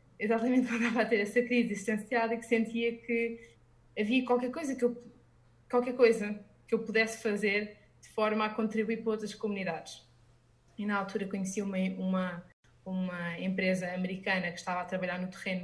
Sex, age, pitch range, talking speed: female, 20-39, 185-230 Hz, 170 wpm